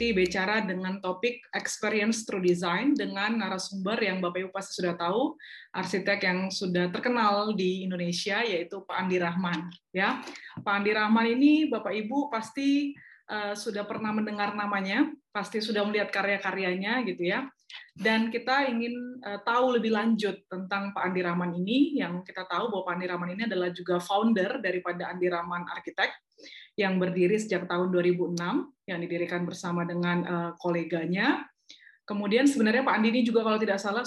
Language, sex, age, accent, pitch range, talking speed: English, female, 20-39, Indonesian, 180-220 Hz, 160 wpm